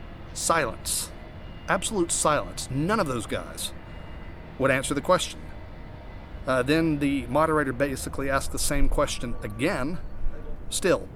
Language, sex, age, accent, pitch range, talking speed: English, male, 40-59, American, 115-155 Hz, 120 wpm